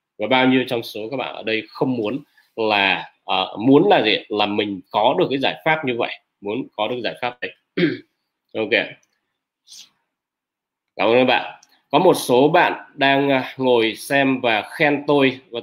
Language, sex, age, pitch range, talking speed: Vietnamese, male, 20-39, 110-145 Hz, 185 wpm